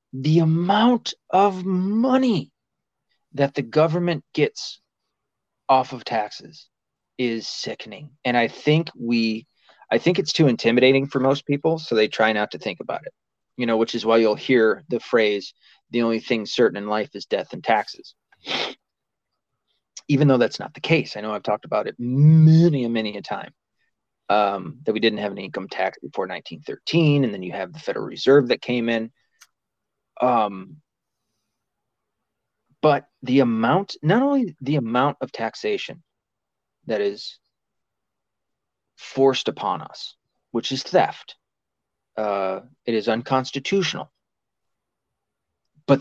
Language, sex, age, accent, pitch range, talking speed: English, male, 30-49, American, 115-160 Hz, 145 wpm